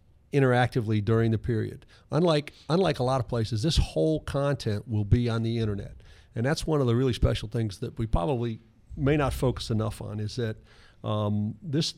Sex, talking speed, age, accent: male, 190 wpm, 50-69, American